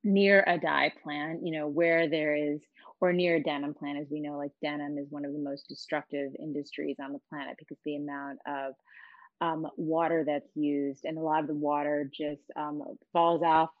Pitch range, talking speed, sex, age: 145-175 Hz, 205 wpm, female, 30-49